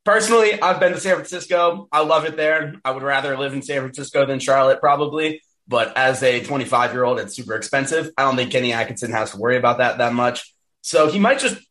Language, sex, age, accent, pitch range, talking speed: English, male, 20-39, American, 110-155 Hz, 220 wpm